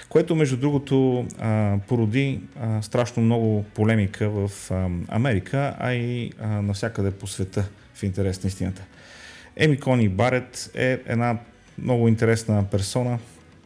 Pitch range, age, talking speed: 105-125 Hz, 30-49, 115 wpm